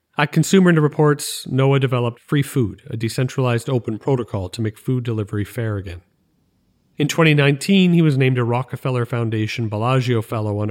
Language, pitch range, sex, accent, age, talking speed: English, 110-140 Hz, male, American, 40-59, 155 wpm